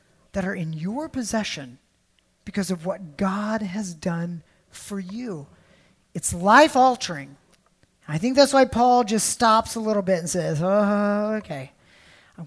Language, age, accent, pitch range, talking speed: English, 30-49, American, 160-225 Hz, 145 wpm